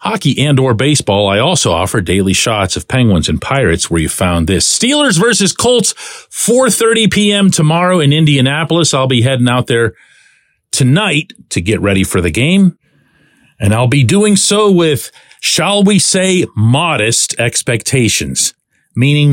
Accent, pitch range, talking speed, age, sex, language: American, 100-170 Hz, 150 wpm, 40-59, male, English